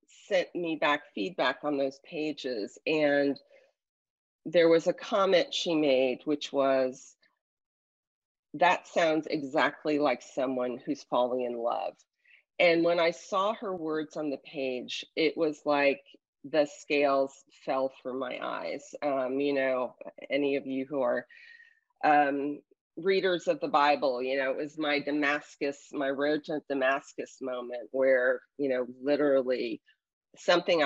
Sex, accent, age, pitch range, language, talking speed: female, American, 40-59, 135-165 Hz, English, 140 wpm